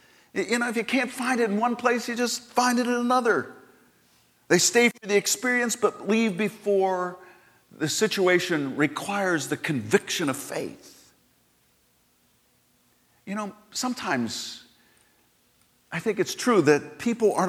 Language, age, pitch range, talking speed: English, 50-69, 170-225 Hz, 140 wpm